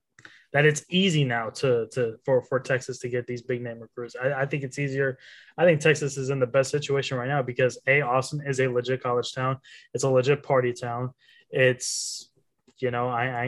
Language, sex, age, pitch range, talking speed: English, male, 20-39, 125-140 Hz, 215 wpm